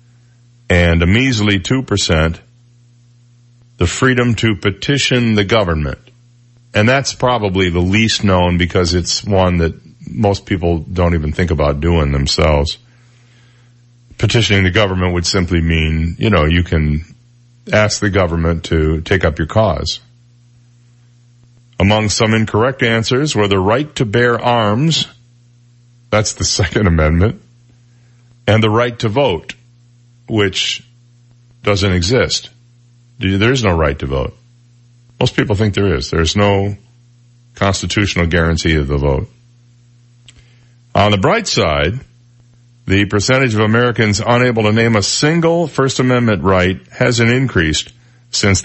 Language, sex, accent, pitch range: English, male, American, 90-120 Hz